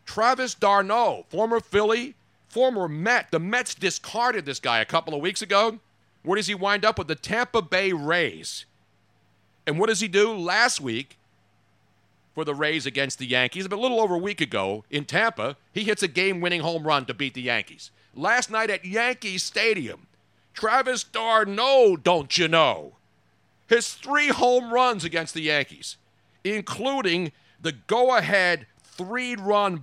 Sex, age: male, 50-69